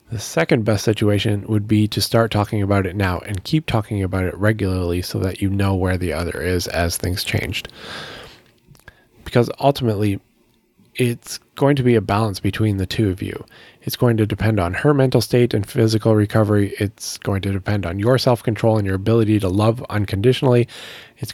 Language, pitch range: English, 100-120 Hz